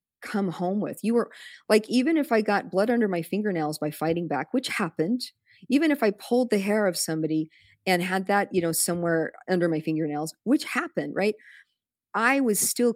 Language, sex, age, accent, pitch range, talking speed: English, female, 40-59, American, 155-210 Hz, 195 wpm